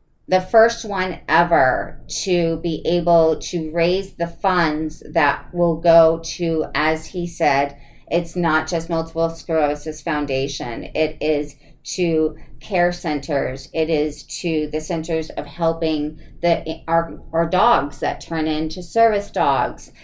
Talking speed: 135 wpm